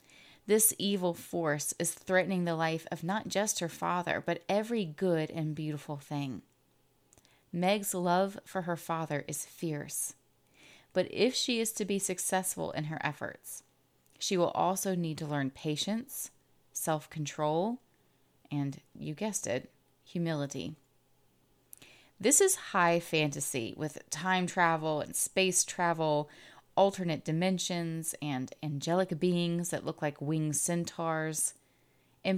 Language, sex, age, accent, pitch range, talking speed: English, female, 30-49, American, 145-185 Hz, 130 wpm